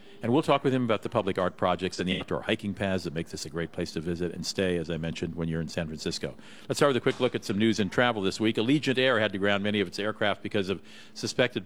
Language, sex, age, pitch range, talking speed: English, male, 50-69, 95-120 Hz, 300 wpm